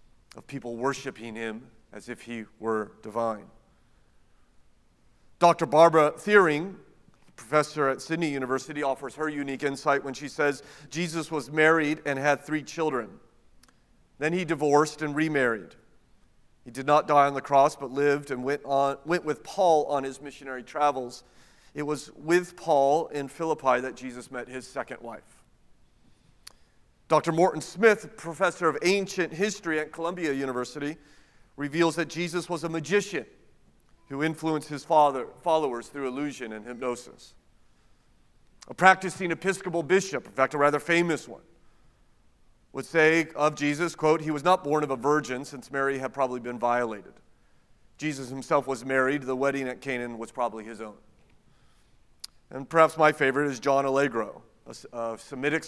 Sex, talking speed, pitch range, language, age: male, 150 wpm, 130-155 Hz, English, 40-59